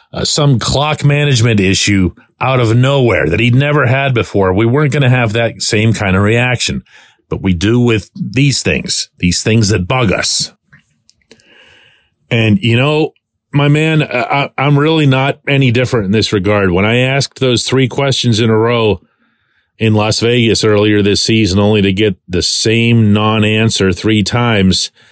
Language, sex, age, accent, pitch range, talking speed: English, male, 40-59, American, 95-125 Hz, 165 wpm